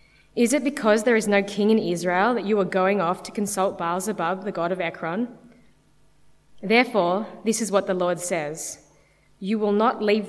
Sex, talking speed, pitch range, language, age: female, 190 wpm, 175-220 Hz, English, 20-39